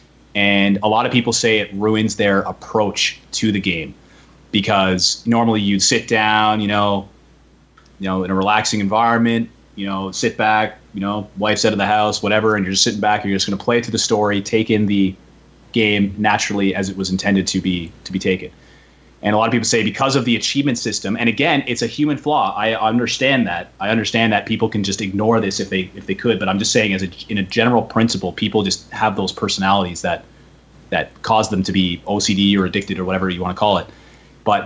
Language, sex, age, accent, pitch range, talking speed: English, male, 30-49, American, 95-110 Hz, 225 wpm